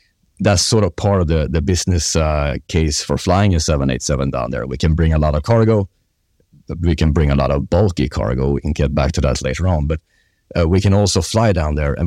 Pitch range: 75-95 Hz